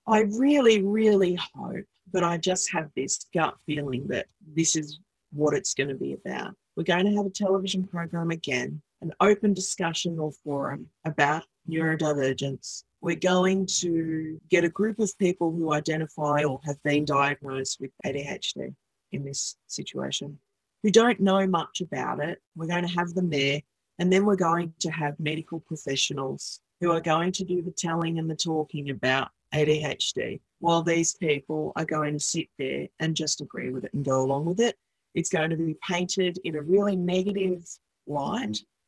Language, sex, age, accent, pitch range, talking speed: English, female, 40-59, Australian, 150-190 Hz, 175 wpm